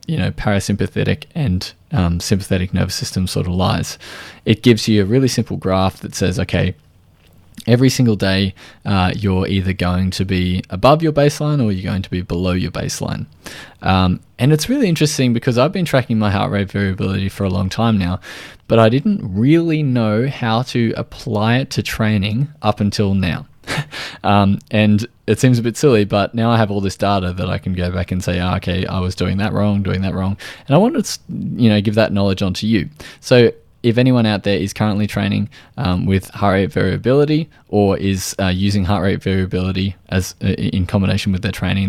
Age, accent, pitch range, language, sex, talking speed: 20-39, Australian, 95-120 Hz, English, male, 205 wpm